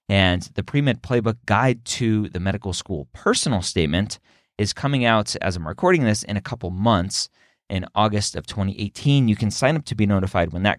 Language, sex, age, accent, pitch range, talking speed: English, male, 30-49, American, 95-125 Hz, 195 wpm